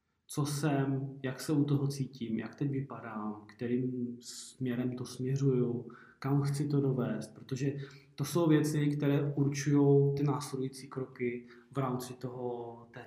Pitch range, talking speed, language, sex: 130-145 Hz, 140 wpm, Czech, male